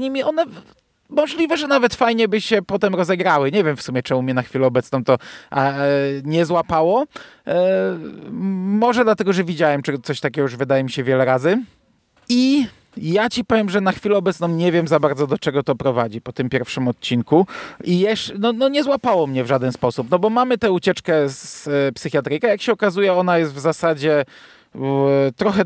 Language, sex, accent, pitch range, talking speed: Polish, male, native, 130-185 Hz, 180 wpm